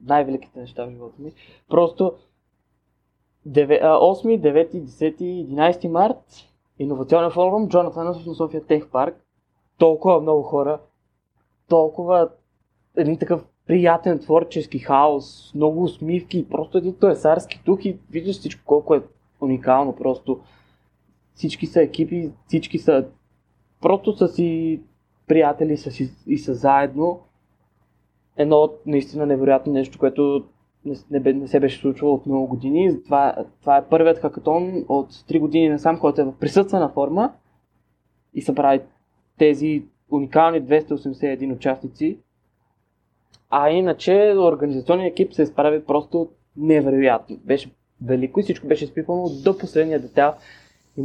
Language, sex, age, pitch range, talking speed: Bulgarian, male, 20-39, 135-170 Hz, 125 wpm